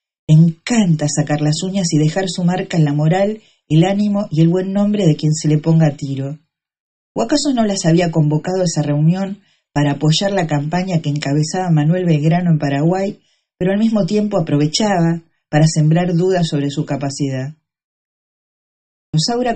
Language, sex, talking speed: Spanish, female, 170 wpm